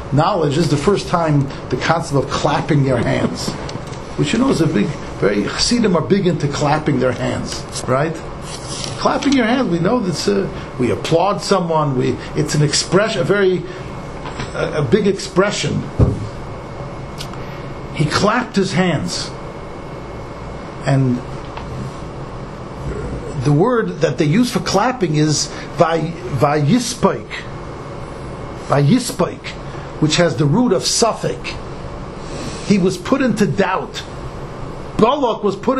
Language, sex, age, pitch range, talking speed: English, male, 50-69, 150-230 Hz, 130 wpm